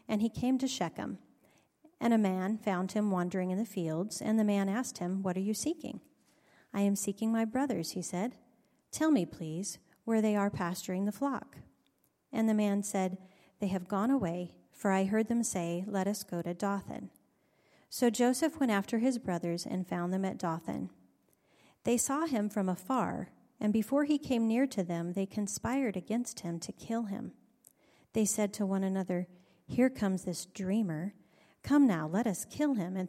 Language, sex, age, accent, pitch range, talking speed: English, female, 40-59, American, 185-225 Hz, 185 wpm